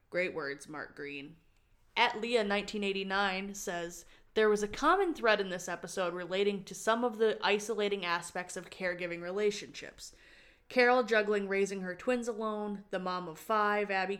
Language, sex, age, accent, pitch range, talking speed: English, female, 20-39, American, 175-205 Hz, 150 wpm